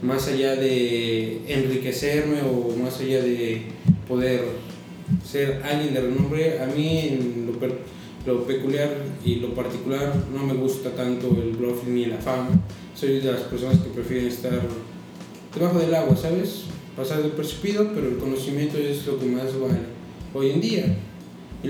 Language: Spanish